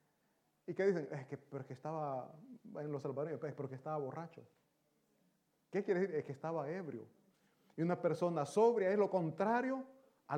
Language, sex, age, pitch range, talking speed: Italian, male, 30-49, 155-205 Hz, 170 wpm